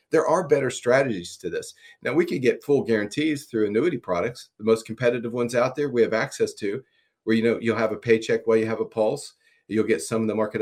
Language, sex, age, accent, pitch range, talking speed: English, male, 40-59, American, 110-135 Hz, 245 wpm